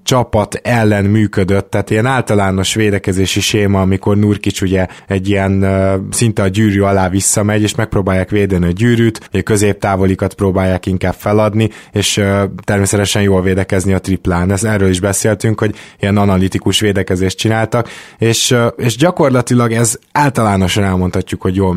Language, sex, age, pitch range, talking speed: Hungarian, male, 20-39, 95-110 Hz, 130 wpm